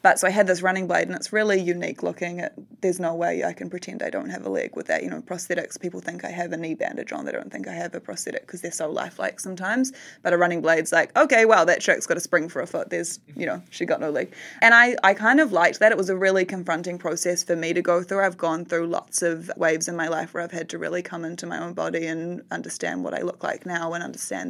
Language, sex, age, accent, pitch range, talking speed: English, female, 20-39, Australian, 170-185 Hz, 285 wpm